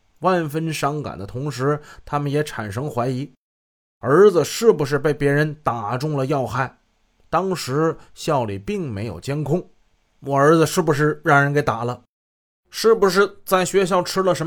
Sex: male